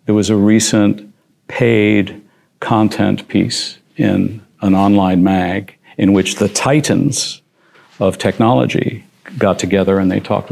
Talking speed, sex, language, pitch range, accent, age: 125 wpm, male, English, 95-115 Hz, American, 60-79